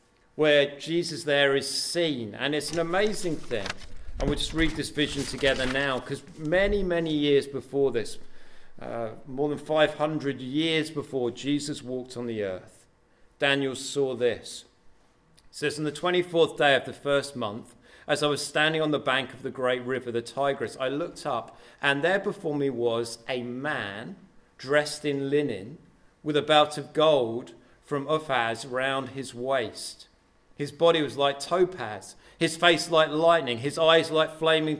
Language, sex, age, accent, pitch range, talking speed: English, male, 40-59, British, 130-160 Hz, 165 wpm